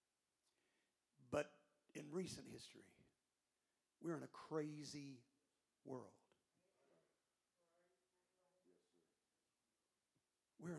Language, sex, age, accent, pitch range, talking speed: English, male, 50-69, American, 175-265 Hz, 55 wpm